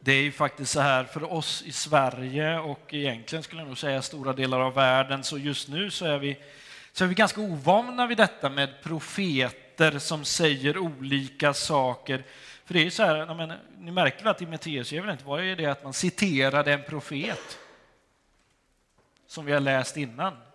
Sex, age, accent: male, 30-49, native